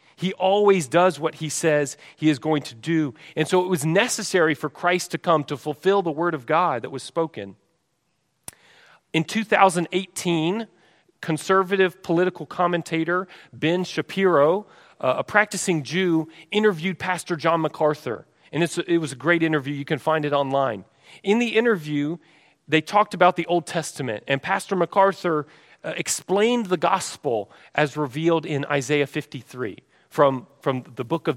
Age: 40-59